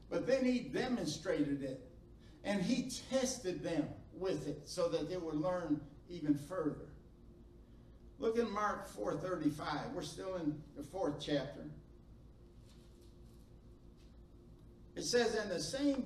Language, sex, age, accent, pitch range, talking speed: English, male, 60-79, American, 150-240 Hz, 125 wpm